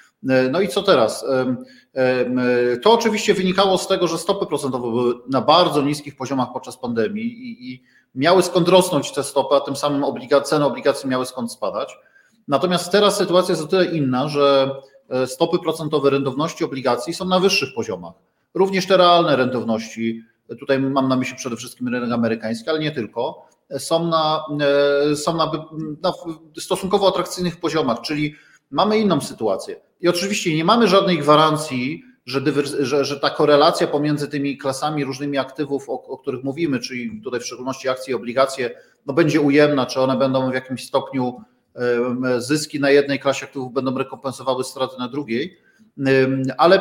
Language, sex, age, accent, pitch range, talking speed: Polish, male, 40-59, native, 135-175 Hz, 155 wpm